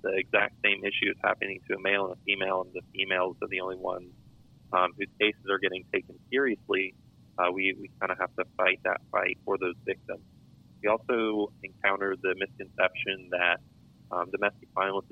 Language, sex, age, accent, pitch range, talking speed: English, male, 30-49, American, 95-115 Hz, 185 wpm